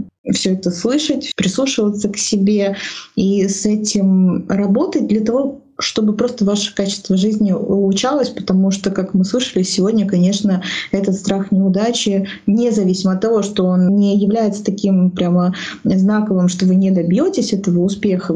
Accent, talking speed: native, 145 wpm